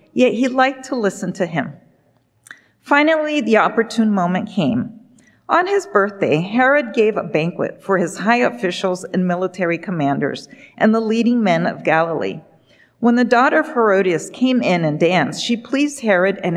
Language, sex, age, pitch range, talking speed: English, female, 40-59, 175-235 Hz, 165 wpm